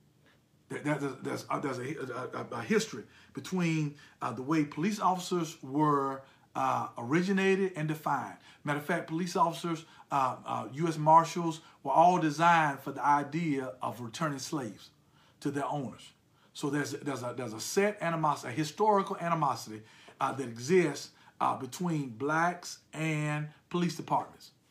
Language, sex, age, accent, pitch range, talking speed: English, male, 50-69, American, 145-185 Hz, 140 wpm